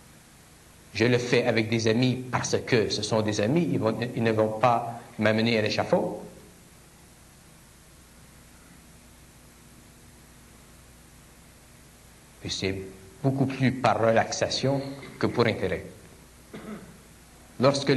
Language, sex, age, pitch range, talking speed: French, male, 60-79, 95-125 Hz, 105 wpm